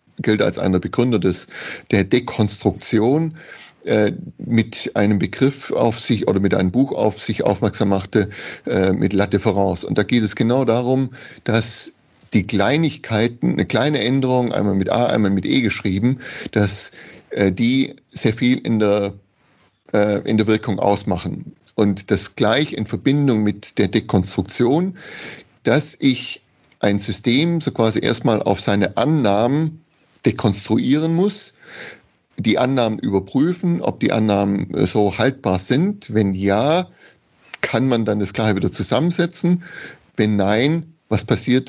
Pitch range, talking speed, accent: 100-130 Hz, 140 wpm, German